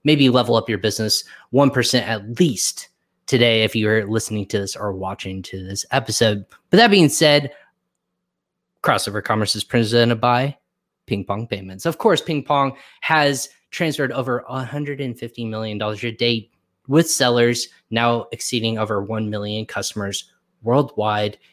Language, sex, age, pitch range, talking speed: English, male, 20-39, 110-145 Hz, 140 wpm